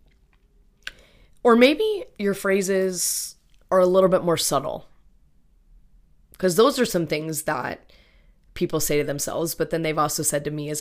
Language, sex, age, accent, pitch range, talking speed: English, female, 20-39, American, 120-195 Hz, 155 wpm